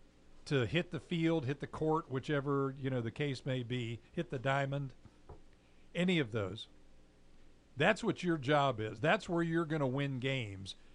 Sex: male